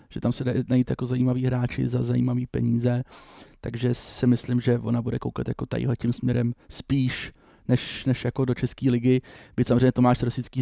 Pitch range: 120-130 Hz